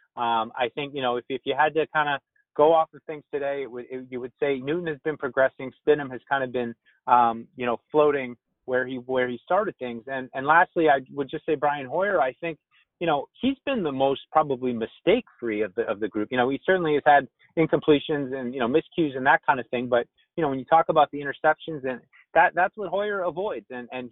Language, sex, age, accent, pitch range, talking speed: English, male, 30-49, American, 130-160 Hz, 250 wpm